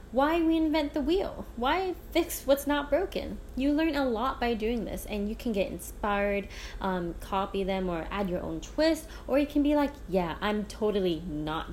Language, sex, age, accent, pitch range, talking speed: English, female, 20-39, American, 190-275 Hz, 195 wpm